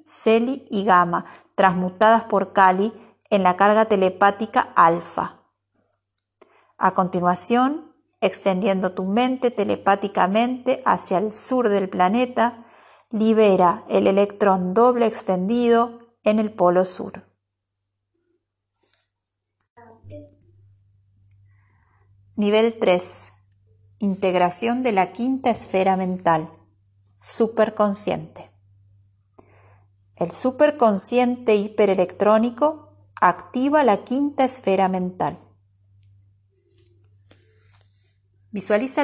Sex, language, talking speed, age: female, Spanish, 75 wpm, 40-59